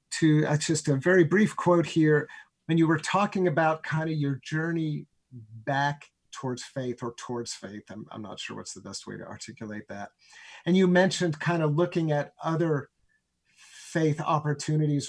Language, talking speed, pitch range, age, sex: English, 170 wpm, 135-165 Hz, 50-69, male